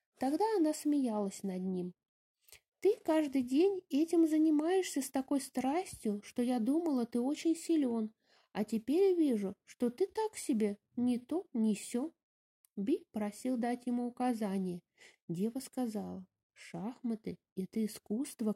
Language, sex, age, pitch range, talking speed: English, female, 20-39, 215-285 Hz, 135 wpm